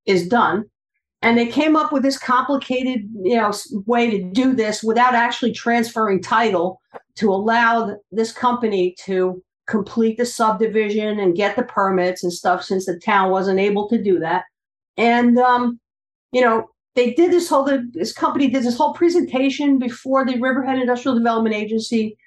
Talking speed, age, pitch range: 165 wpm, 50-69, 210-255 Hz